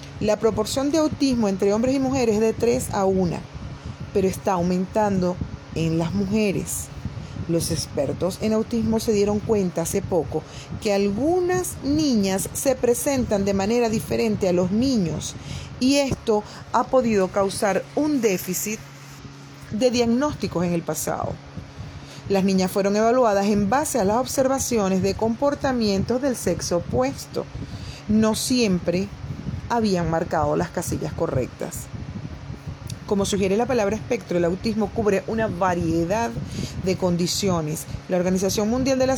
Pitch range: 175-230 Hz